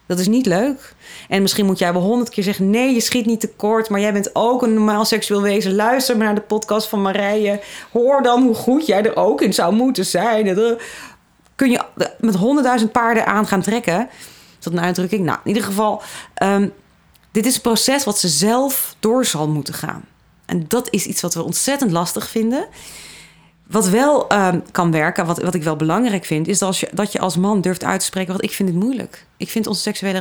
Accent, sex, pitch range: Dutch, female, 175-225 Hz